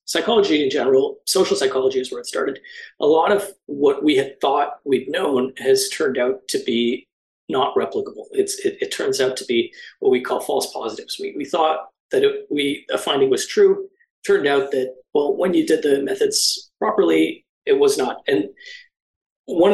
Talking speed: 190 wpm